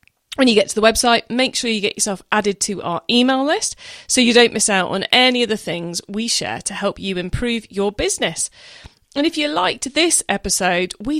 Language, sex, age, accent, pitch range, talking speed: English, female, 40-59, British, 195-260 Hz, 220 wpm